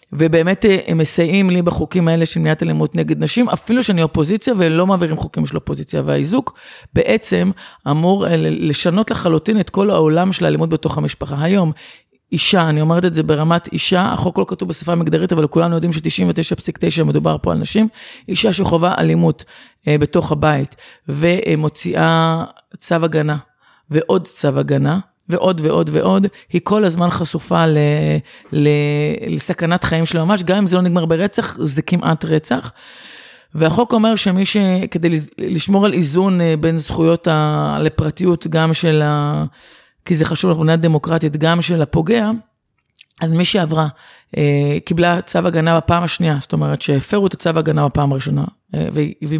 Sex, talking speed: female, 150 wpm